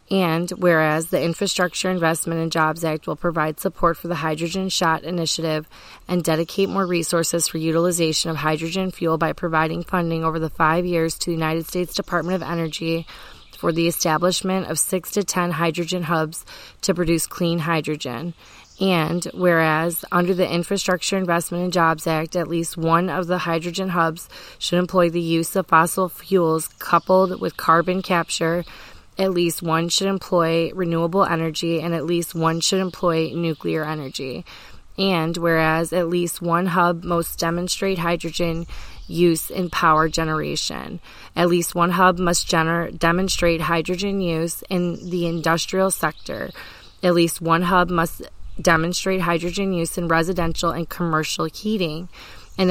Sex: female